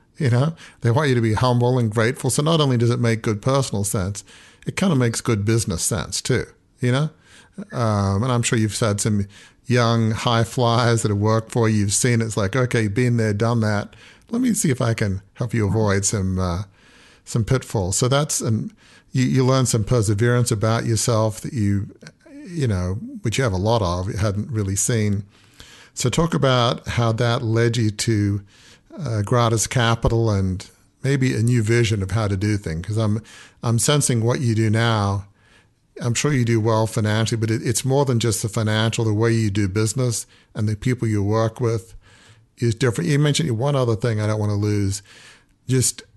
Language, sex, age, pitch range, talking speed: English, male, 50-69, 105-125 Hz, 205 wpm